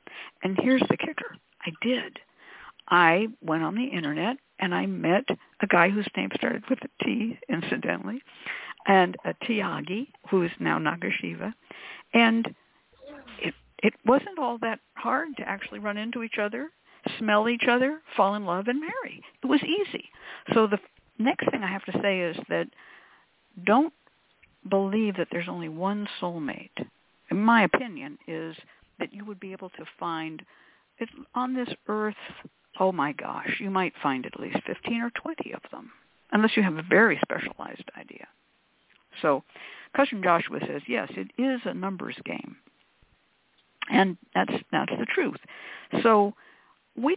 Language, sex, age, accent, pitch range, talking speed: English, female, 60-79, American, 185-250 Hz, 155 wpm